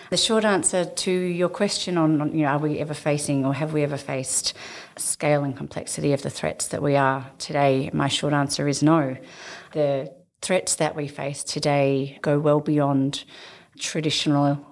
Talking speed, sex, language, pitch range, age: 175 wpm, female, English, 145-170 Hz, 30-49